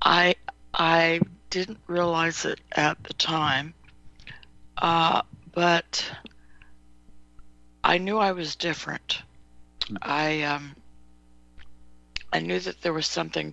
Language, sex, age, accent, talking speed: English, female, 60-79, American, 100 wpm